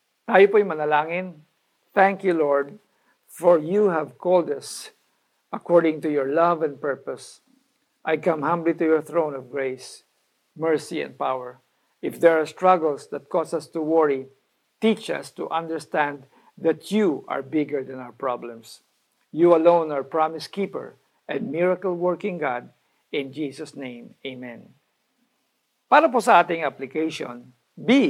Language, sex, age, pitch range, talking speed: Filipino, male, 50-69, 145-195 Hz, 145 wpm